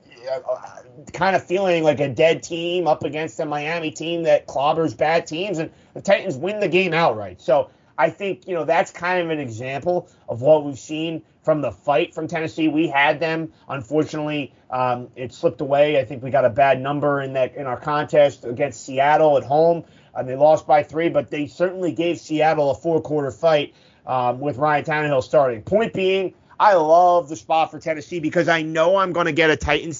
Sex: male